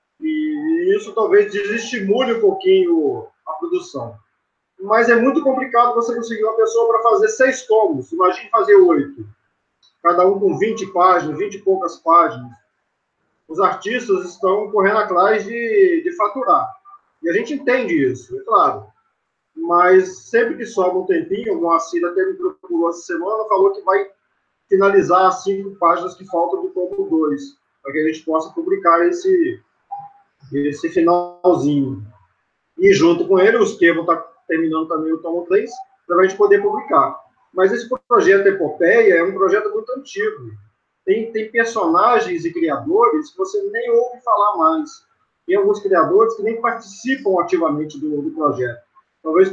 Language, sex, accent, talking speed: Portuguese, male, Brazilian, 160 wpm